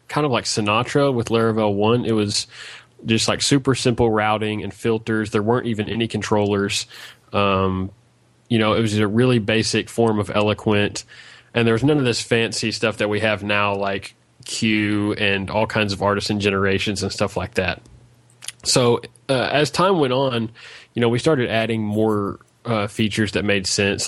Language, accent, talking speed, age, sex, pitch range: English, American, 185 wpm, 20-39, male, 105-120 Hz